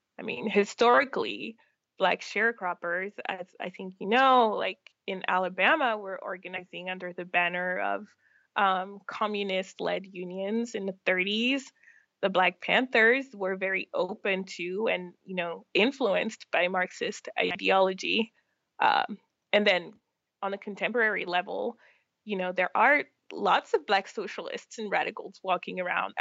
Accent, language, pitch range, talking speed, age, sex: American, English, 180-225 Hz, 135 wpm, 20-39, female